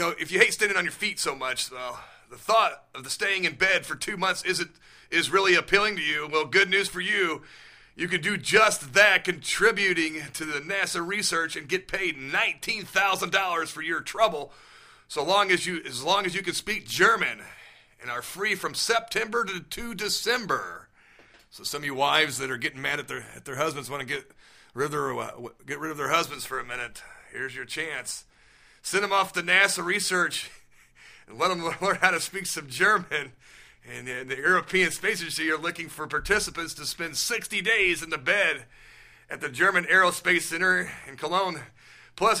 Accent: American